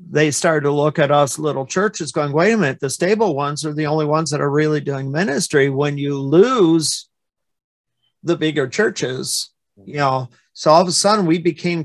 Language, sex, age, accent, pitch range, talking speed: English, male, 50-69, American, 140-160 Hz, 195 wpm